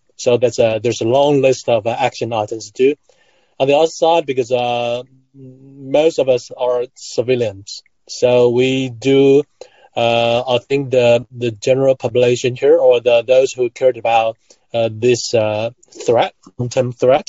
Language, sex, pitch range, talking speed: English, male, 120-140 Hz, 160 wpm